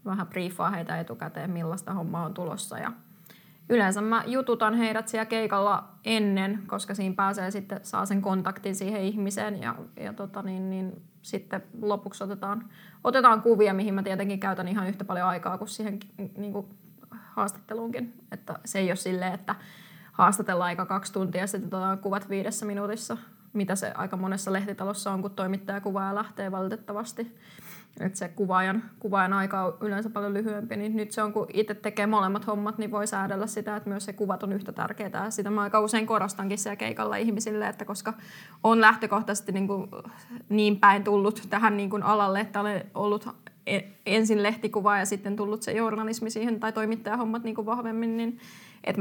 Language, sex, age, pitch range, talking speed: Finnish, female, 20-39, 195-215 Hz, 175 wpm